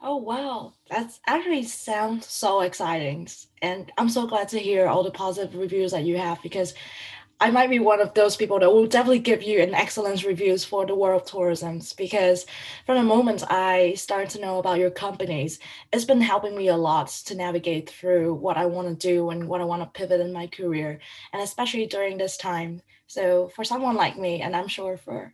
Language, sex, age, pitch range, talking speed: English, female, 20-39, 180-220 Hz, 210 wpm